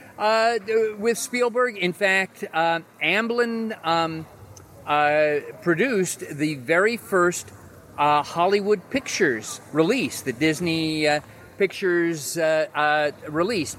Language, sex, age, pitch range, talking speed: English, male, 40-59, 140-175 Hz, 105 wpm